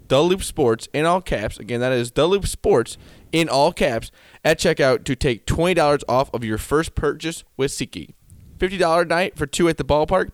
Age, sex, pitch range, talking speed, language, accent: 20-39, male, 125-165 Hz, 210 wpm, English, American